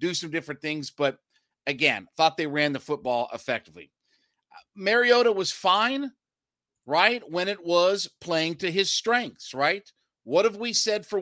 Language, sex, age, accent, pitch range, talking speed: English, male, 50-69, American, 155-200 Hz, 155 wpm